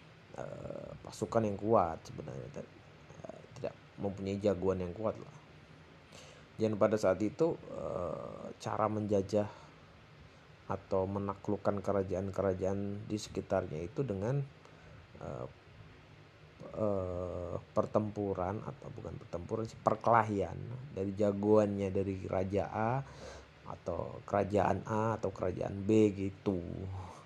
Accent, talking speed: native, 90 wpm